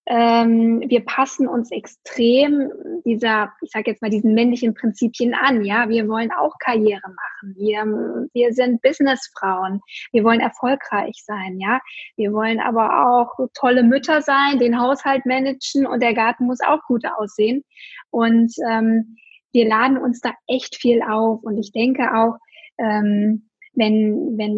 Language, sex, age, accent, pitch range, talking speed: German, female, 20-39, German, 225-260 Hz, 150 wpm